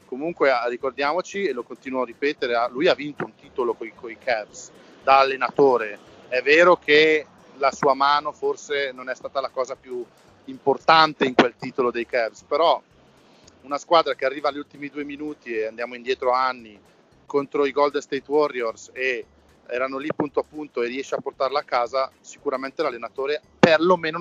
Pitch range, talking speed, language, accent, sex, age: 125-160 Hz, 170 wpm, Italian, native, male, 40-59